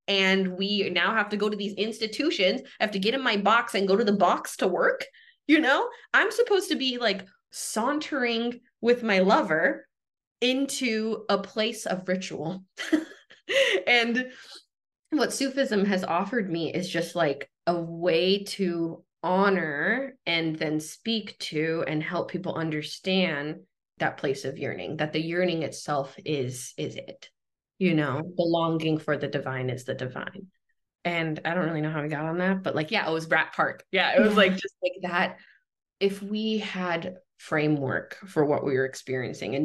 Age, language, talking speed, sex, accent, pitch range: 20-39, English, 175 wpm, female, American, 155-215 Hz